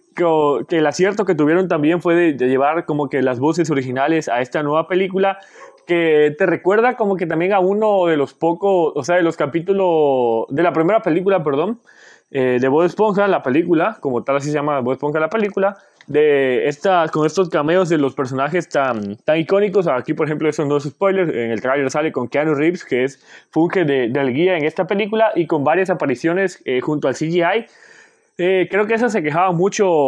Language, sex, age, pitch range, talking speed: Spanish, male, 20-39, 145-195 Hz, 215 wpm